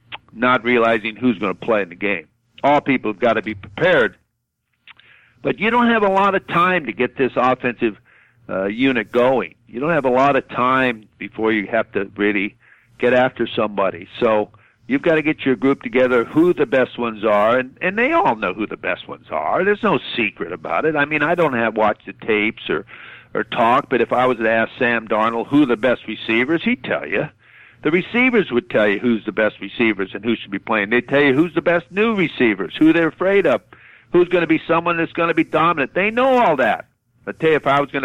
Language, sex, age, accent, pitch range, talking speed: English, male, 60-79, American, 120-170 Hz, 230 wpm